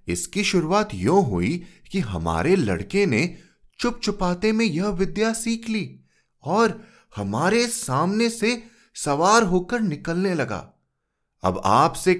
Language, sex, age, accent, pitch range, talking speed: Hindi, male, 30-49, native, 155-215 Hz, 125 wpm